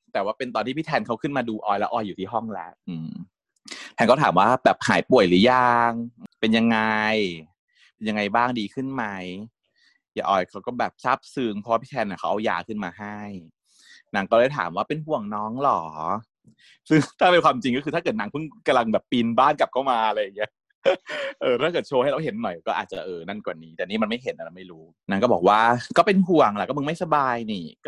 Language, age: Thai, 20-39